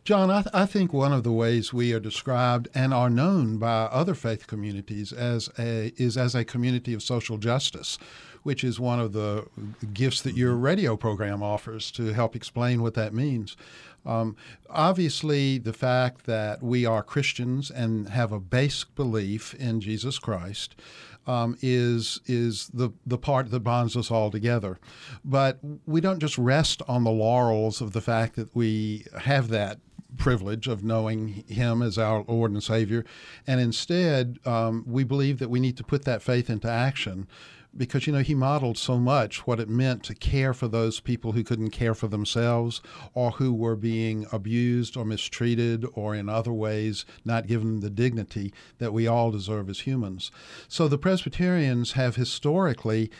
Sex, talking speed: male, 175 wpm